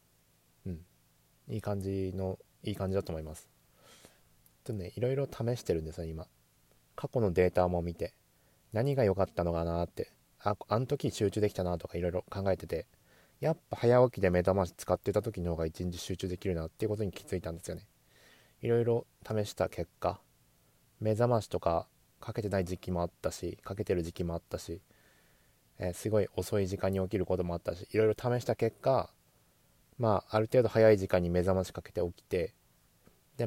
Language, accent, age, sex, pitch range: Japanese, native, 20-39, male, 85-110 Hz